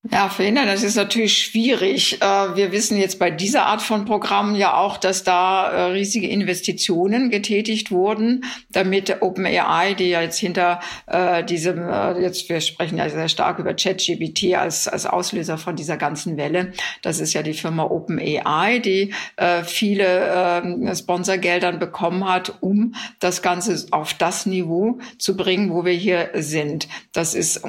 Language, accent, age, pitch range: German, German, 60-79, 170-195 Hz